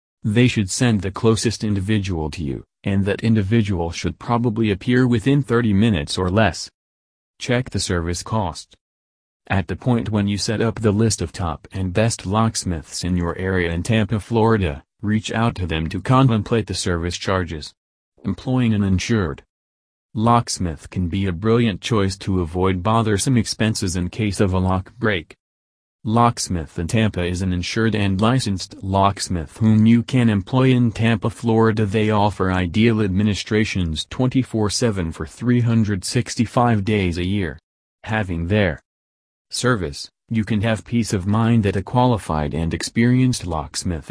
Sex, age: male, 30-49